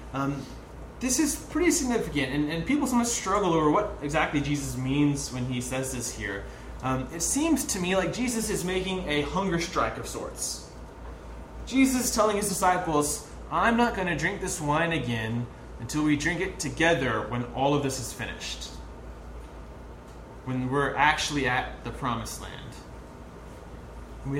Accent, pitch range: American, 120-180 Hz